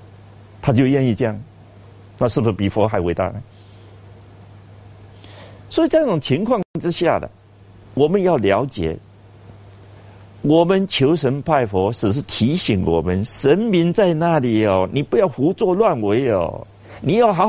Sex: male